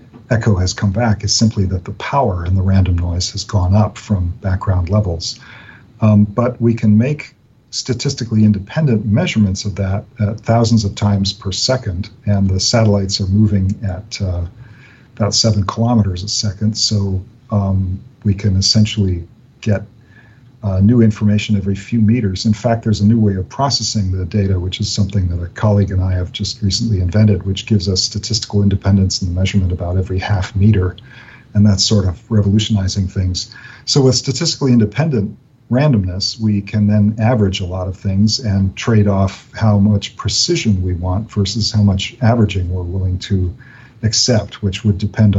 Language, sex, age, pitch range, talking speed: English, male, 50-69, 95-115 Hz, 175 wpm